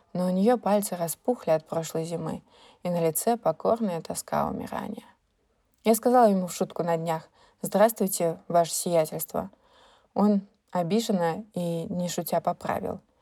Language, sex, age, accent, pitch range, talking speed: Russian, female, 20-39, native, 170-210 Hz, 135 wpm